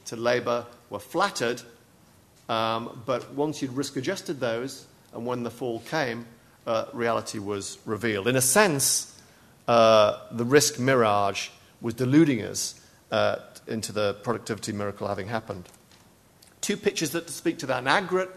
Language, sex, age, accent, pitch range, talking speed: English, male, 50-69, British, 115-150 Hz, 150 wpm